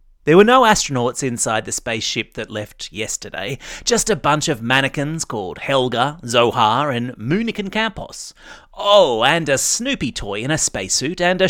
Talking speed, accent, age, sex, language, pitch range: 160 wpm, Australian, 30-49, male, English, 125-190 Hz